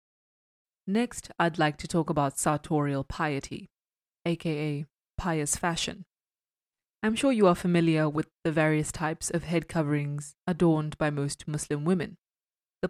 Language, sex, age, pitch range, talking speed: English, female, 20-39, 150-175 Hz, 135 wpm